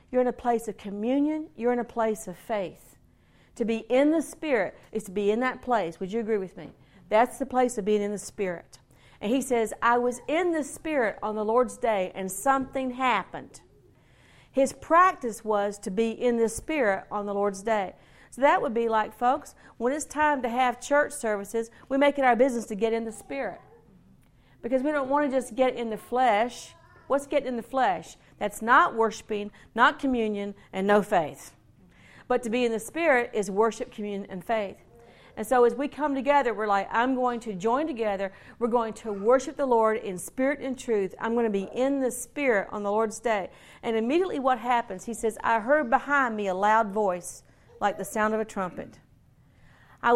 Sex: female